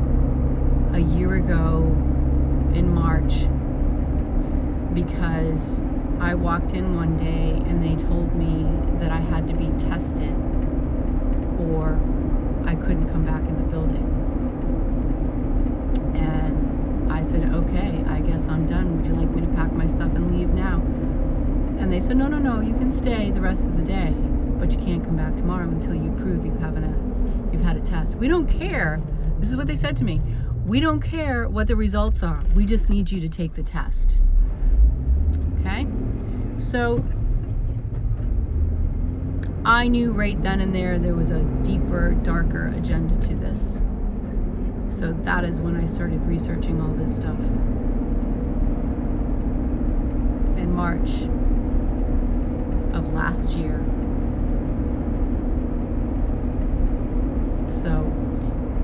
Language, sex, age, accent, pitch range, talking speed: English, female, 30-49, American, 75-90 Hz, 140 wpm